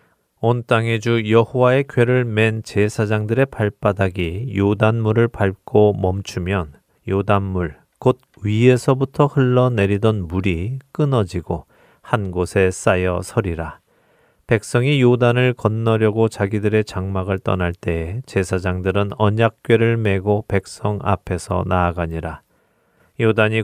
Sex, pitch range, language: male, 95-115 Hz, Korean